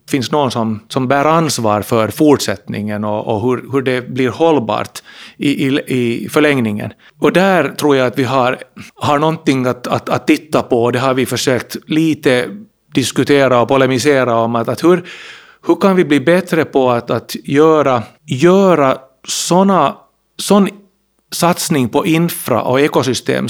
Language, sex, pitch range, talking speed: Finnish, male, 120-155 Hz, 160 wpm